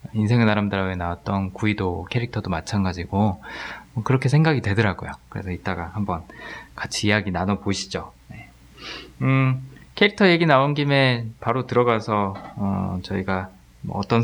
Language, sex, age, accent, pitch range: Korean, male, 20-39, native, 95-135 Hz